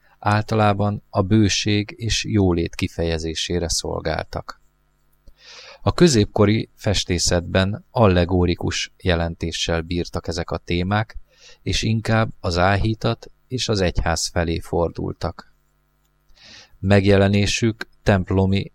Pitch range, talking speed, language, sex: 85-105 Hz, 85 wpm, Hungarian, male